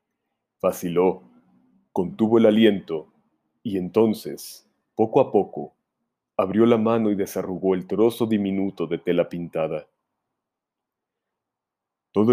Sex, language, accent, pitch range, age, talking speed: male, Spanish, Mexican, 90-110 Hz, 40-59, 100 wpm